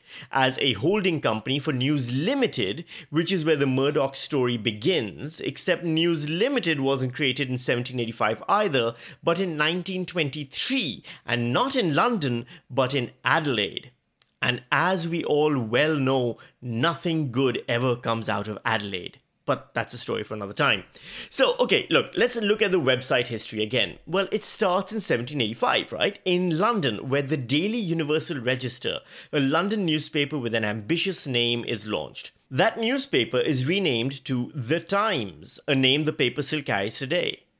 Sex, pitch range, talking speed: male, 120-170 Hz, 155 wpm